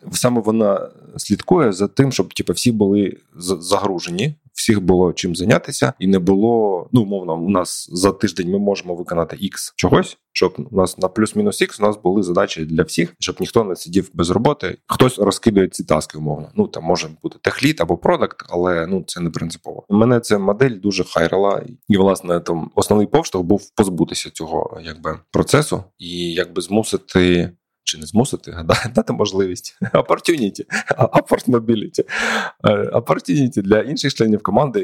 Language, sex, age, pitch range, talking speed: Ukrainian, male, 20-39, 90-110 Hz, 160 wpm